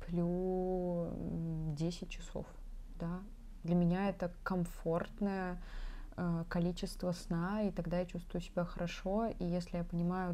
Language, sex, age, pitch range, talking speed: Russian, female, 20-39, 170-205 Hz, 110 wpm